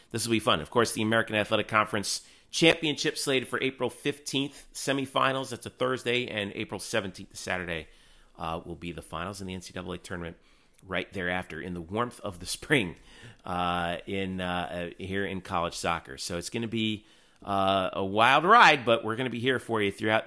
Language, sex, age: English, male, 30-49